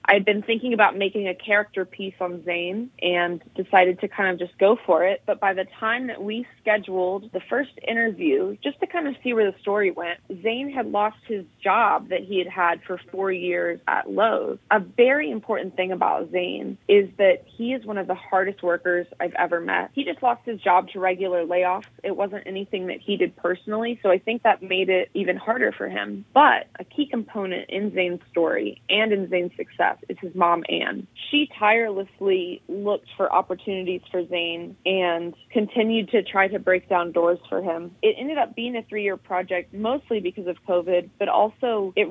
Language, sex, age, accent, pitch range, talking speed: English, female, 20-39, American, 180-215 Hz, 200 wpm